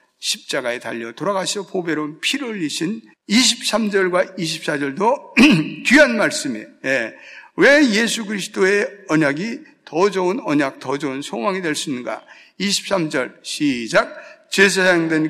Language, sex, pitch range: Korean, male, 180-280 Hz